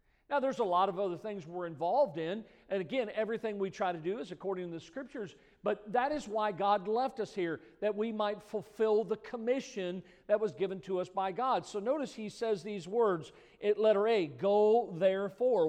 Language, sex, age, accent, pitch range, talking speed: English, male, 40-59, American, 180-235 Hz, 205 wpm